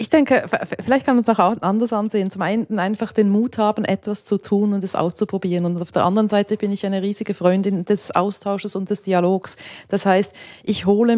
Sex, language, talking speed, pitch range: female, German, 215 wpm, 190-220 Hz